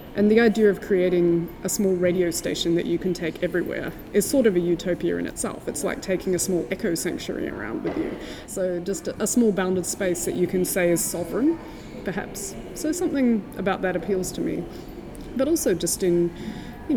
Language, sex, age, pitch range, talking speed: French, female, 20-39, 170-215 Hz, 200 wpm